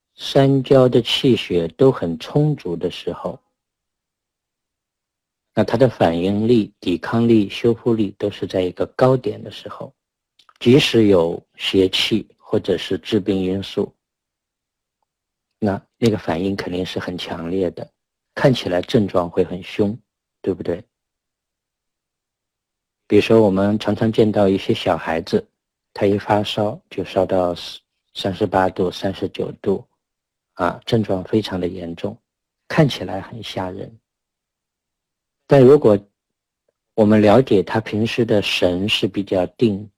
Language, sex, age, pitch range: Chinese, male, 50-69, 95-115 Hz